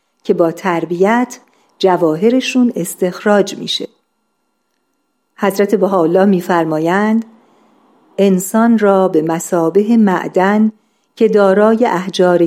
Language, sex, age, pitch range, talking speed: Persian, female, 50-69, 180-220 Hz, 80 wpm